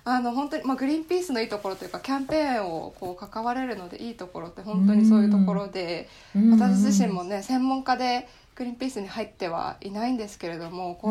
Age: 20-39